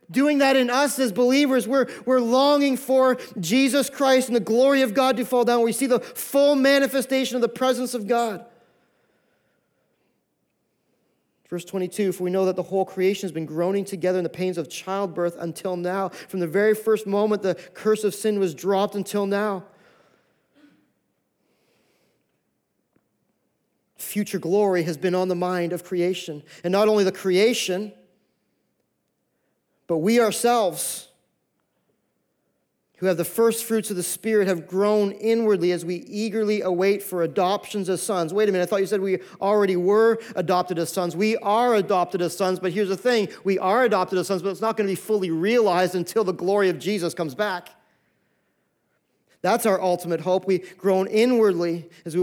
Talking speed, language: 170 wpm, English